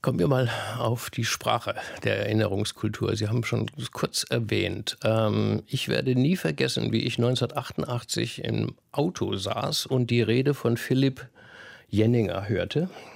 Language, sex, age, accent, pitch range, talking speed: German, male, 50-69, German, 115-135 Hz, 140 wpm